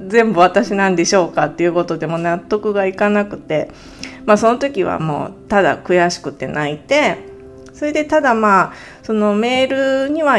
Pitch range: 170-250 Hz